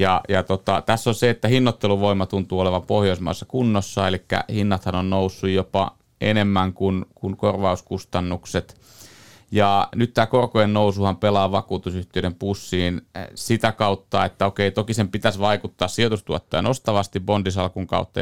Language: Finnish